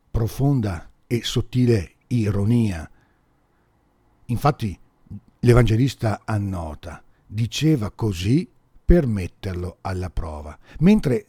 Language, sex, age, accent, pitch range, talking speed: Italian, male, 50-69, native, 95-125 Hz, 75 wpm